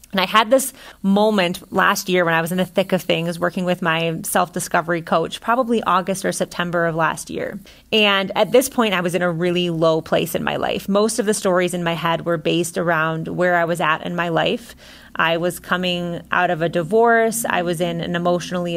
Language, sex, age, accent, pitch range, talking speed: English, female, 30-49, American, 170-205 Hz, 225 wpm